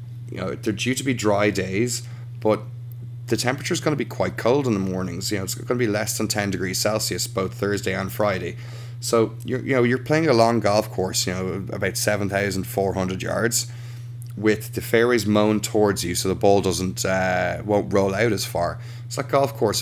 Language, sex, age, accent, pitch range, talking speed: English, male, 20-39, Irish, 100-120 Hz, 210 wpm